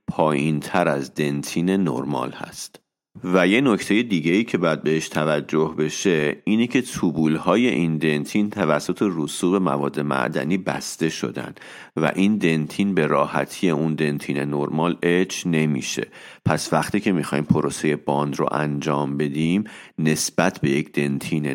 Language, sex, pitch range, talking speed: Persian, male, 80-100 Hz, 140 wpm